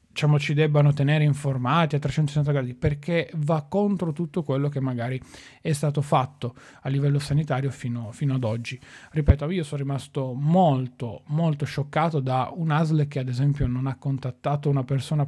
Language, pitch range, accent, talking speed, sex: Italian, 135-155 Hz, native, 165 wpm, male